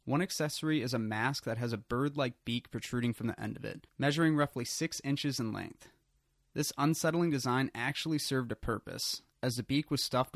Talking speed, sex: 195 wpm, male